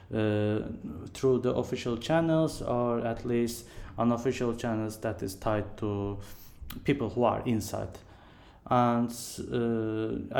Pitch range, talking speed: 110-125 Hz, 115 wpm